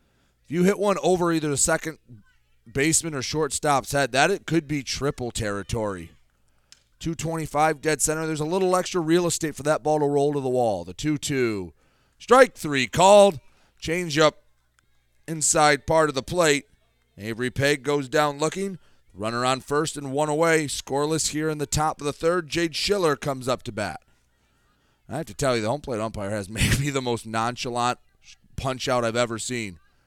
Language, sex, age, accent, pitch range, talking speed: English, male, 30-49, American, 110-155 Hz, 185 wpm